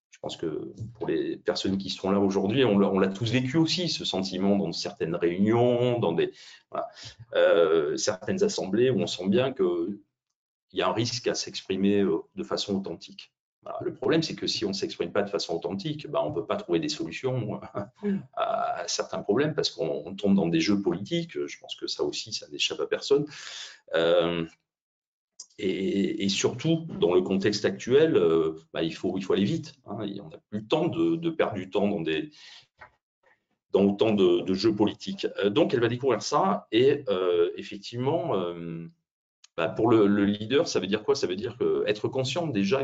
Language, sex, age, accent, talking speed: French, male, 40-59, French, 200 wpm